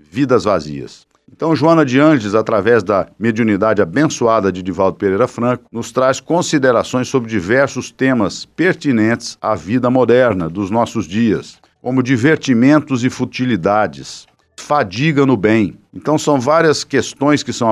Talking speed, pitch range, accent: 135 wpm, 105-140 Hz, Brazilian